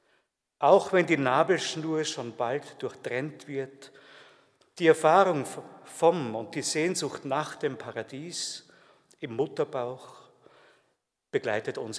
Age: 50-69